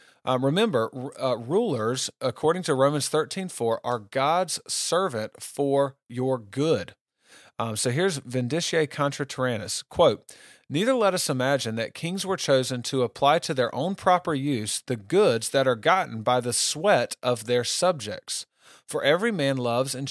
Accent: American